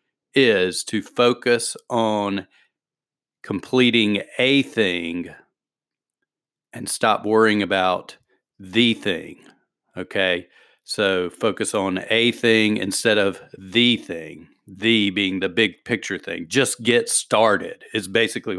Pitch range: 100-115 Hz